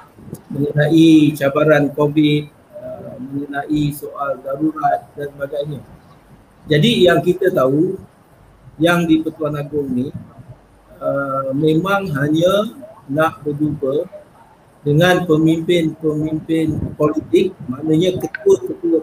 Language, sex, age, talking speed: Malay, male, 50-69, 80 wpm